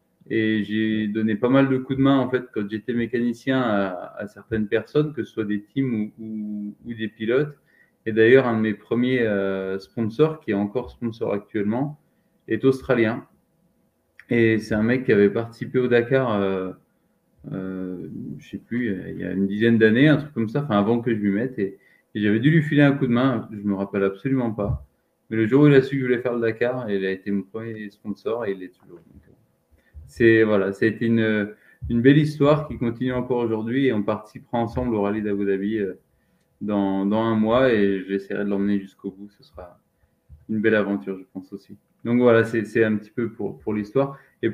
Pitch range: 100-120 Hz